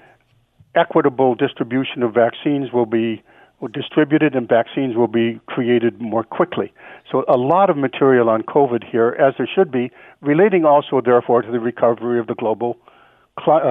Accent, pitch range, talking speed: American, 120-145 Hz, 160 wpm